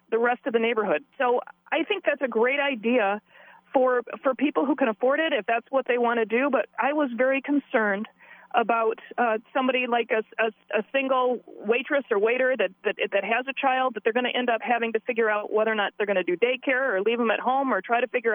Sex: female